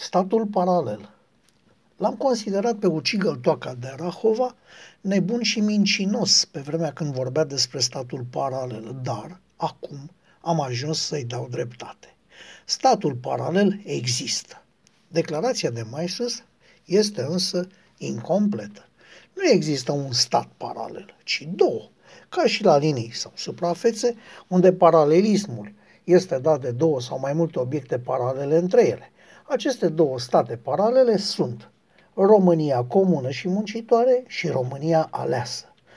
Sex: male